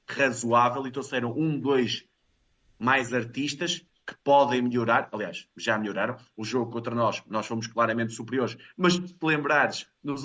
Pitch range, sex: 115-150 Hz, male